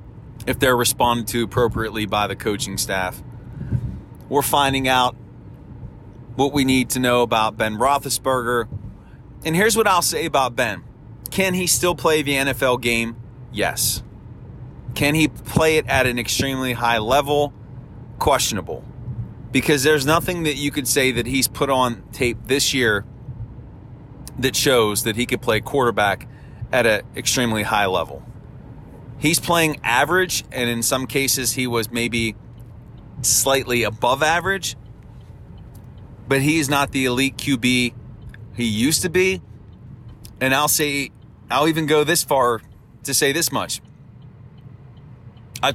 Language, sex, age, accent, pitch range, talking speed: English, male, 30-49, American, 120-140 Hz, 140 wpm